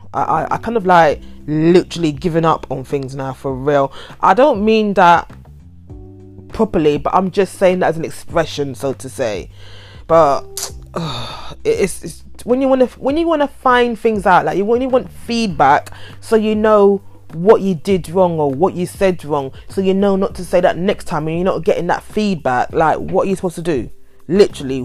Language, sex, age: English, female, 20-39